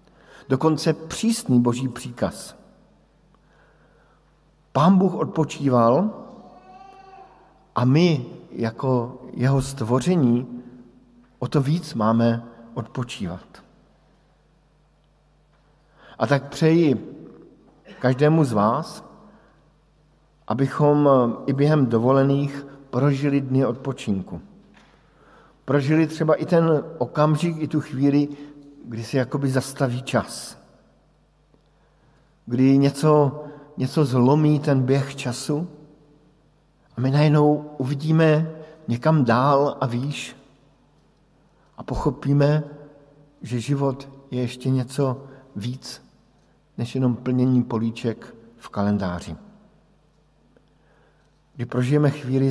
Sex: male